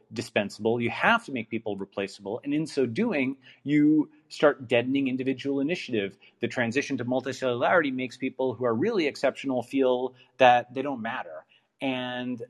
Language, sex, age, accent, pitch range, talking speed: English, male, 30-49, American, 115-140 Hz, 155 wpm